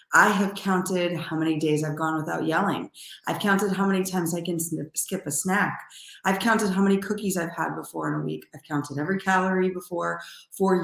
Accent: American